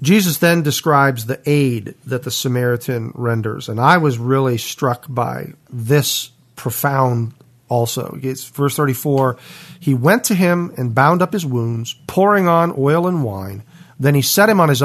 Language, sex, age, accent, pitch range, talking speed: English, male, 40-59, American, 125-170 Hz, 160 wpm